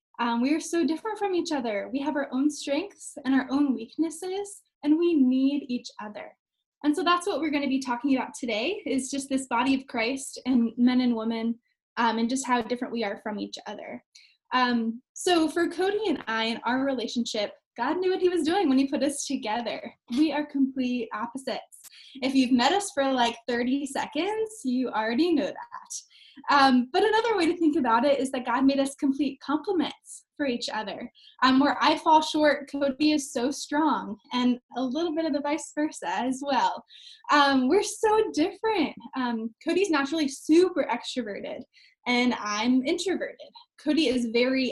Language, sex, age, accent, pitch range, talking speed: English, female, 10-29, American, 250-330 Hz, 190 wpm